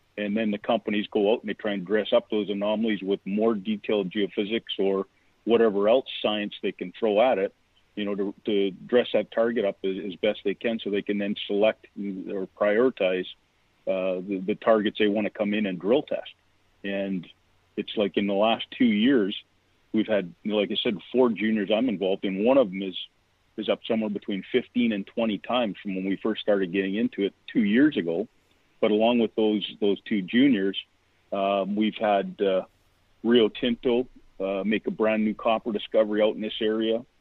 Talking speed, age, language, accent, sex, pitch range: 200 wpm, 40-59, English, American, male, 95-110 Hz